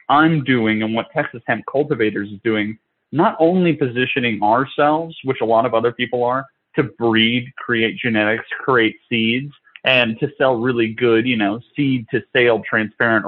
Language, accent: English, American